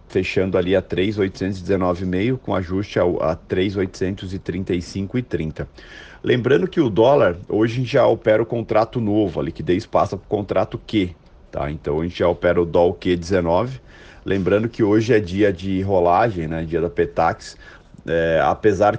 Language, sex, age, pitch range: Portuguese, male, 40-59, 85-105 Hz